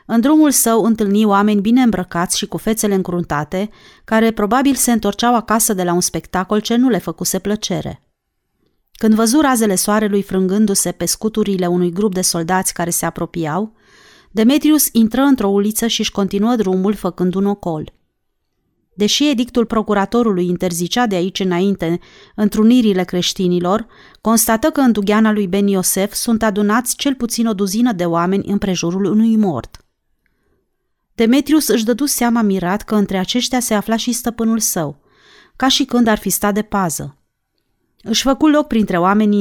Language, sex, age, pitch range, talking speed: Romanian, female, 30-49, 185-230 Hz, 155 wpm